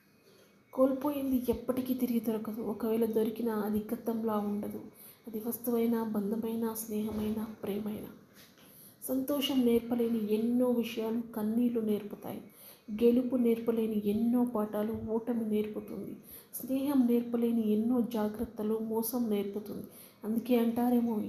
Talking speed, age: 95 wpm, 30-49